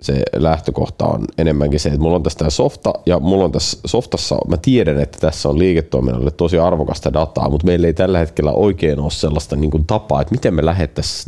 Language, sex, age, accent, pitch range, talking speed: Finnish, male, 30-49, native, 70-90 Hz, 205 wpm